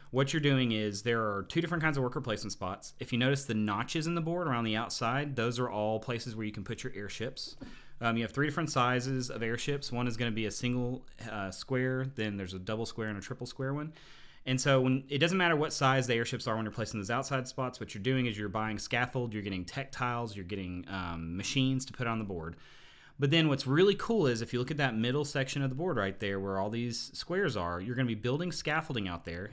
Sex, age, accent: male, 30-49, American